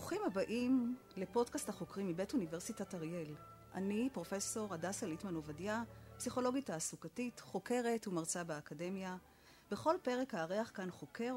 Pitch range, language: 165-235 Hz, Hebrew